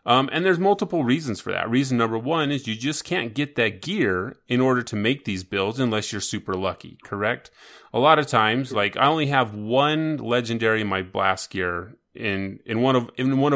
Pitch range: 105-130 Hz